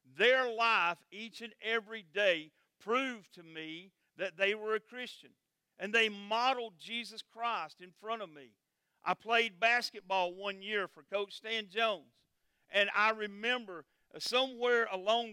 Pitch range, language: 190-235 Hz, English